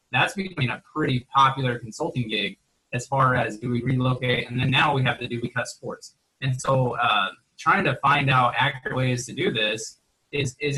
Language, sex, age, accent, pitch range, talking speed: English, male, 20-39, American, 120-130 Hz, 210 wpm